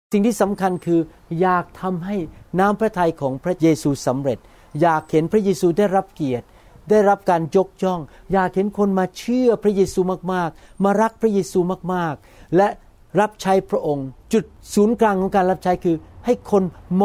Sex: male